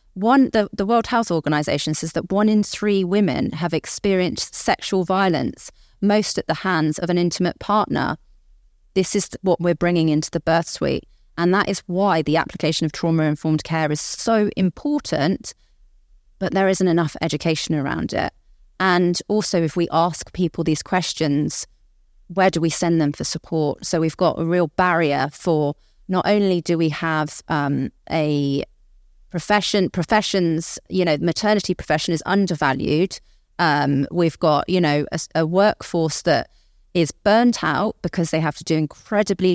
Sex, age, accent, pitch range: female, 30-49, British, 155-185 Hz